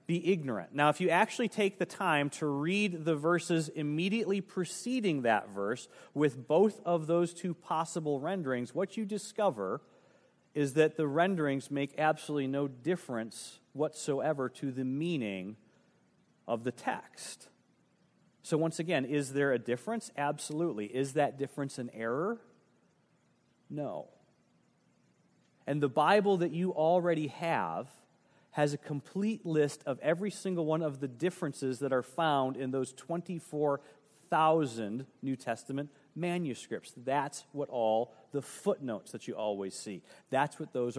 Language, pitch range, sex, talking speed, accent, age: English, 130-170 Hz, male, 140 wpm, American, 40-59